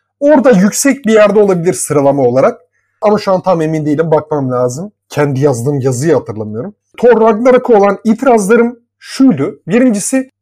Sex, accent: male, native